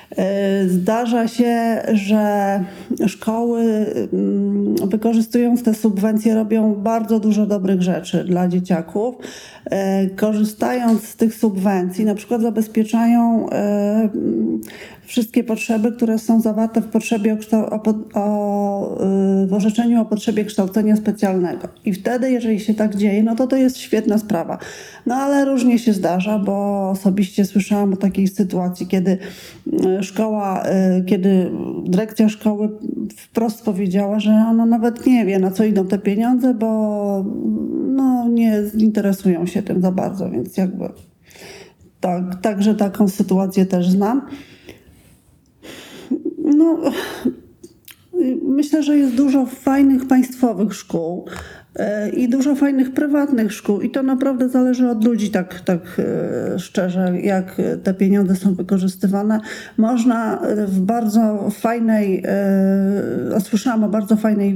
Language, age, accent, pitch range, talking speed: Polish, 40-59, native, 195-235 Hz, 120 wpm